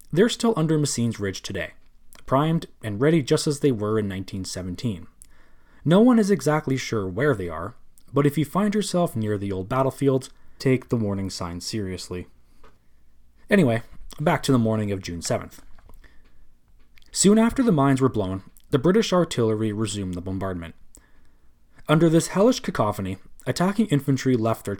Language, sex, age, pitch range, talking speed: English, male, 20-39, 95-140 Hz, 155 wpm